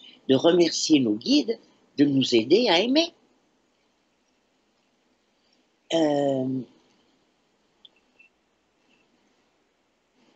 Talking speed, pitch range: 60 wpm, 120-185 Hz